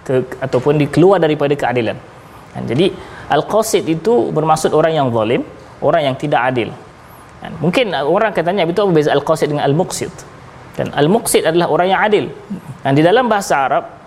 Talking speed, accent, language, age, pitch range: 165 wpm, Indonesian, Malayalam, 20-39, 140-190 Hz